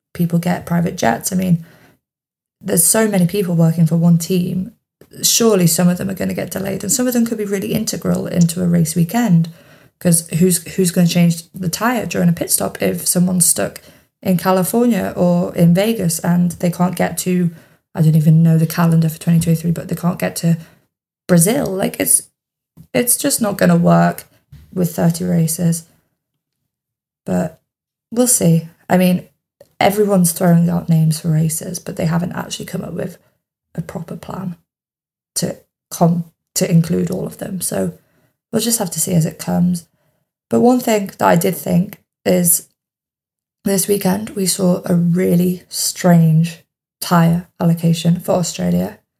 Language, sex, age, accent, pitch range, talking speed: English, female, 20-39, British, 165-195 Hz, 170 wpm